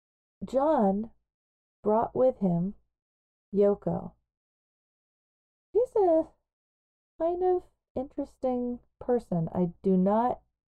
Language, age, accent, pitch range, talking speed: English, 40-59, American, 175-255 Hz, 80 wpm